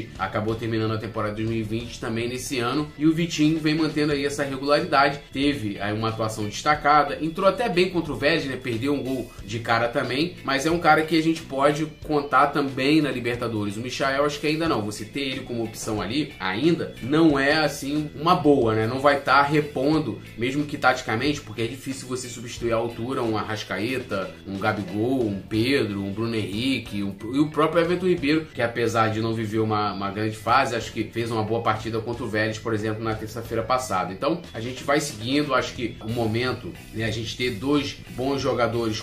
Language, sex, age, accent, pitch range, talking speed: Portuguese, male, 20-39, Brazilian, 110-145 Hz, 205 wpm